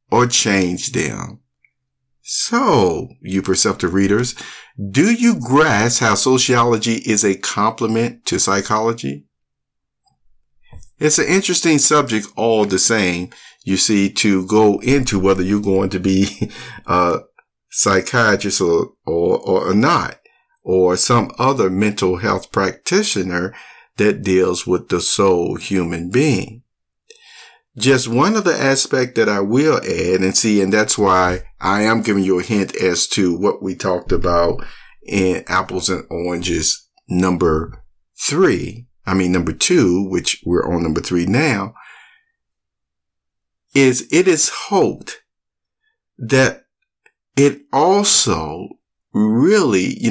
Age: 50-69